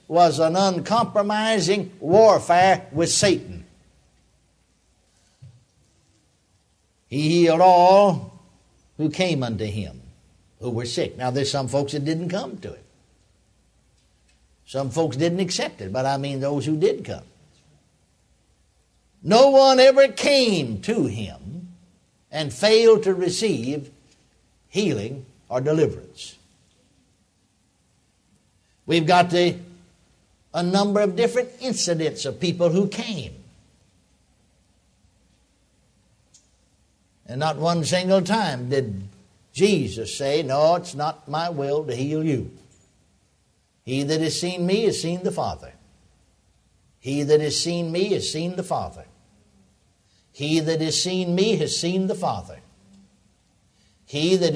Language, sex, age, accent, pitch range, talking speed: English, male, 60-79, American, 110-185 Hz, 120 wpm